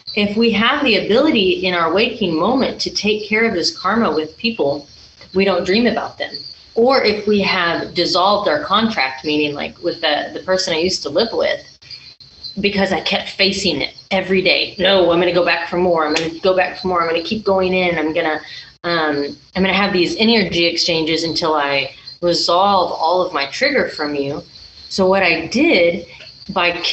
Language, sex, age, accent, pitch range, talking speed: English, female, 30-49, American, 165-205 Hz, 195 wpm